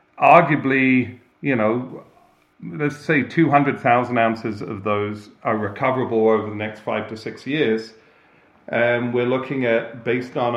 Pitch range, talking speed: 110-135 Hz, 135 wpm